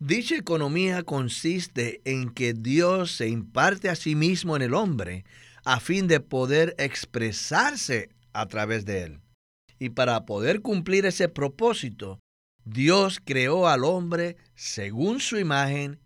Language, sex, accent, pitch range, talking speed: Spanish, male, American, 130-195 Hz, 135 wpm